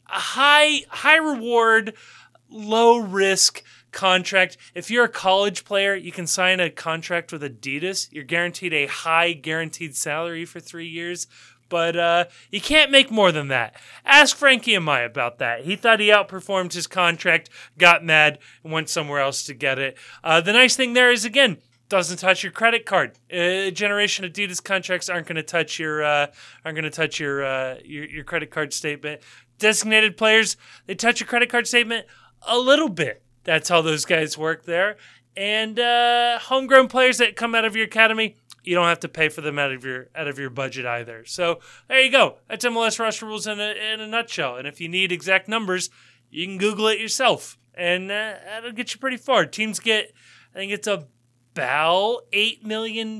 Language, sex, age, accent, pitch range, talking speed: English, male, 30-49, American, 160-225 Hz, 195 wpm